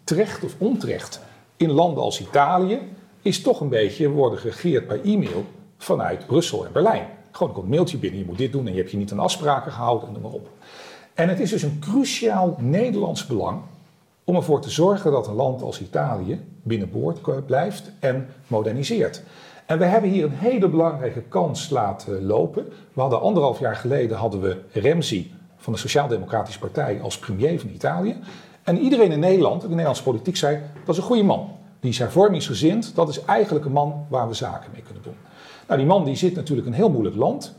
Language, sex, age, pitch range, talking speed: Dutch, male, 40-59, 125-180 Hz, 200 wpm